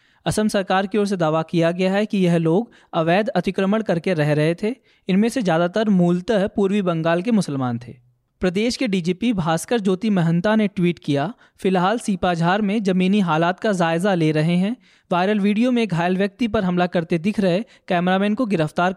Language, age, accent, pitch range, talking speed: Hindi, 20-39, native, 170-210 Hz, 185 wpm